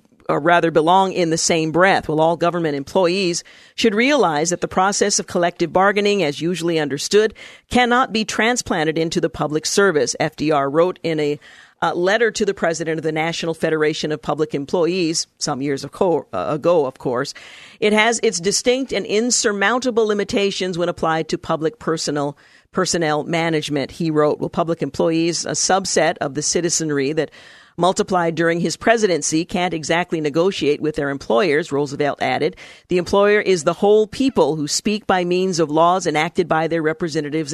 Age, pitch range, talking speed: 50-69, 160-195 Hz, 165 wpm